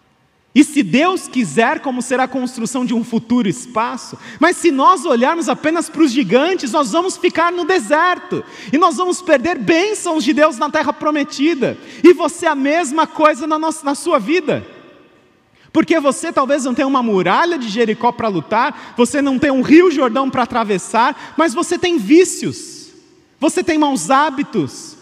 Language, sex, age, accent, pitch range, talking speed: Portuguese, male, 30-49, Brazilian, 240-315 Hz, 170 wpm